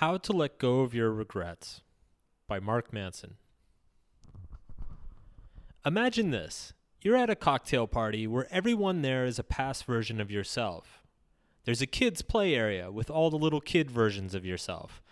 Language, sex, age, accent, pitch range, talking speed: English, male, 30-49, American, 110-155 Hz, 155 wpm